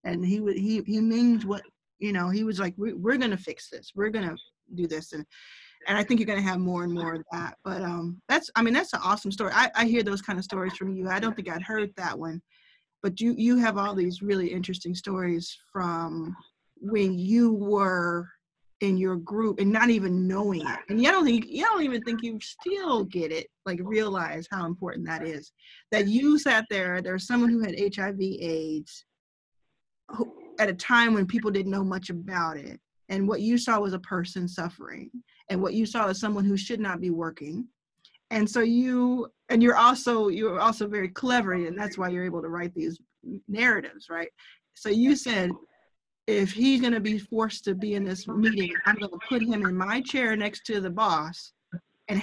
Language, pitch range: English, 185-230 Hz